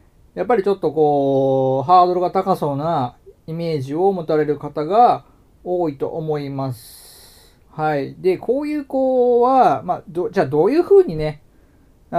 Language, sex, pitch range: Japanese, male, 130-205 Hz